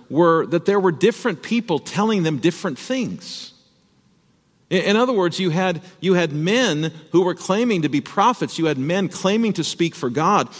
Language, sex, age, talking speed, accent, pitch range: English, male, 50-69, 175 wpm, American, 130-205 Hz